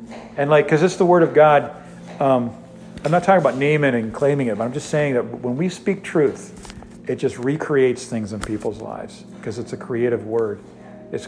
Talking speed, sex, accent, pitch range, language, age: 205 wpm, male, American, 120-155 Hz, English, 50-69